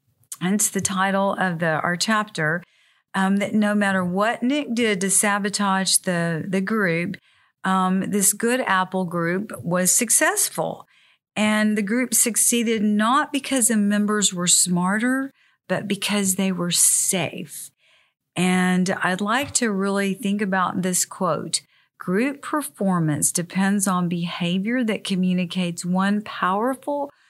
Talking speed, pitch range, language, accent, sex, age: 125 wpm, 180-220 Hz, English, American, female, 50-69